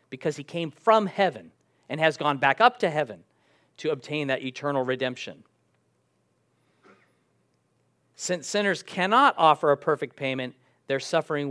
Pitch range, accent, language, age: 130-195 Hz, American, English, 40-59